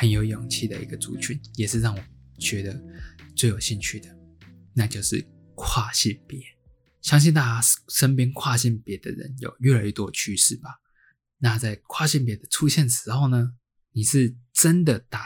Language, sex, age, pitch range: Chinese, male, 20-39, 110-135 Hz